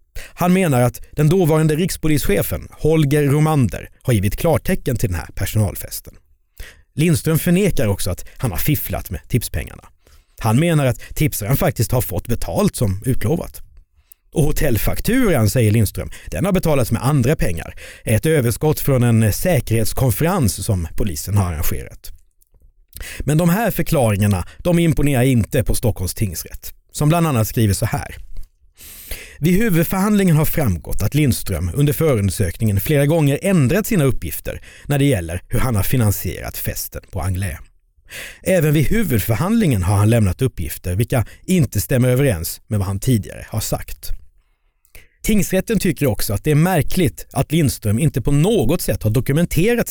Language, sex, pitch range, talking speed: Swedish, male, 95-150 Hz, 150 wpm